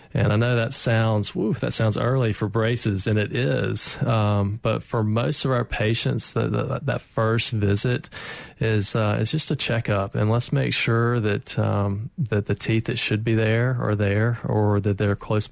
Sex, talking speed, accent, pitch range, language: male, 195 wpm, American, 105-120 Hz, English